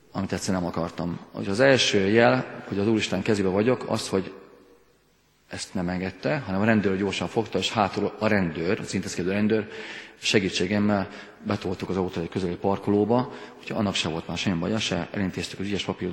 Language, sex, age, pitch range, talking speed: Hungarian, male, 40-59, 95-110 Hz, 180 wpm